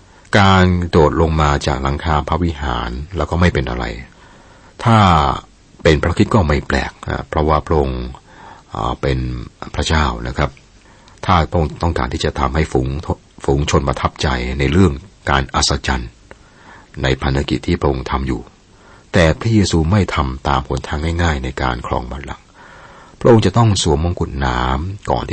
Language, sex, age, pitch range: Thai, male, 60-79, 70-90 Hz